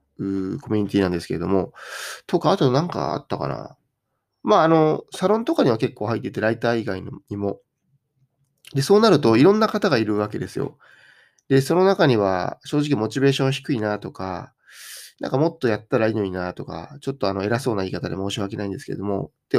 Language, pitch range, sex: Japanese, 105-140 Hz, male